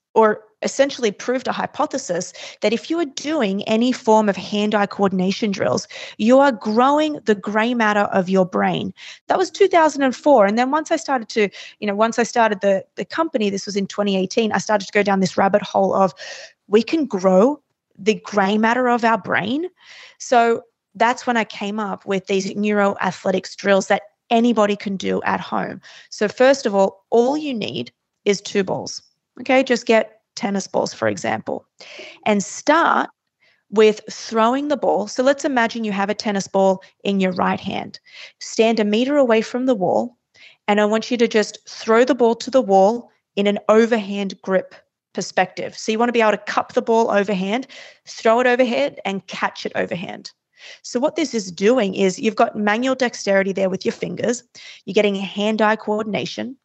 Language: English